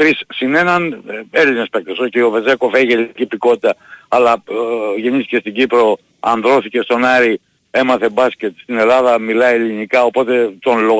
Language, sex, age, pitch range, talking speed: Greek, male, 60-79, 105-130 Hz, 145 wpm